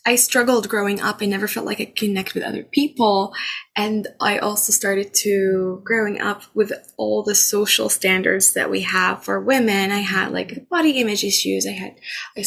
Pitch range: 205-240 Hz